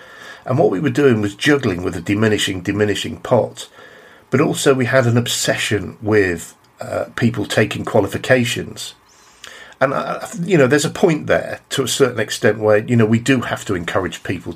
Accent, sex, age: British, male, 50-69